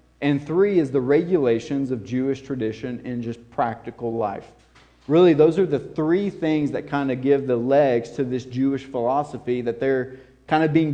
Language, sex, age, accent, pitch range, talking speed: English, male, 40-59, American, 125-160 Hz, 180 wpm